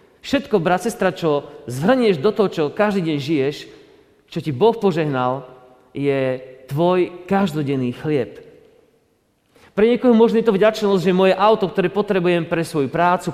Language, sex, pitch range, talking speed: Slovak, male, 150-215 Hz, 150 wpm